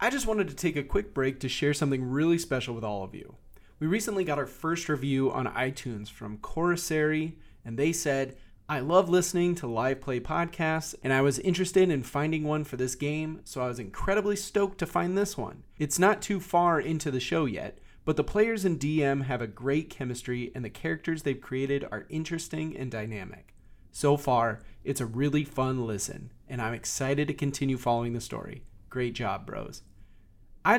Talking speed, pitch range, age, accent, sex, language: 195 wpm, 125-160 Hz, 30-49, American, male, English